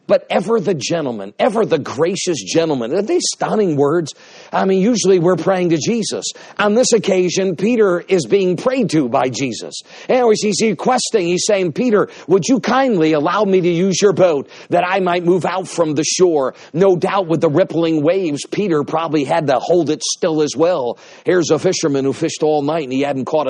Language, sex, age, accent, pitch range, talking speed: English, male, 50-69, American, 150-190 Hz, 200 wpm